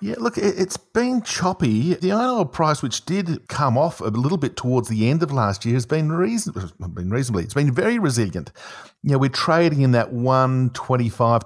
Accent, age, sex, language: Australian, 50-69, male, English